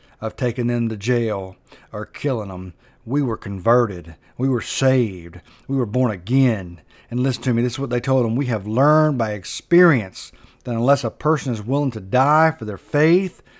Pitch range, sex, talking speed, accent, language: 110-145 Hz, male, 195 wpm, American, English